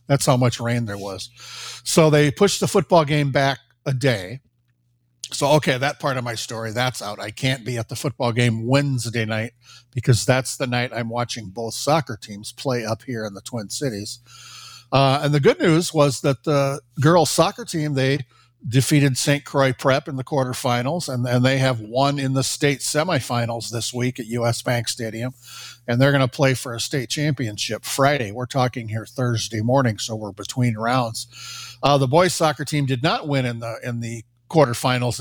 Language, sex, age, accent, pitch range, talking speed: English, male, 50-69, American, 120-135 Hz, 195 wpm